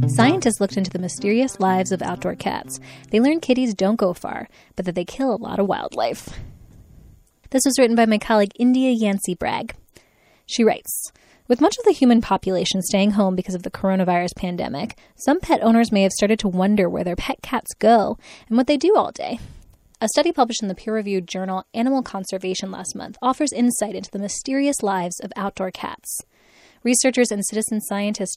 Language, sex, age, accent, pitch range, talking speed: English, female, 20-39, American, 190-245 Hz, 190 wpm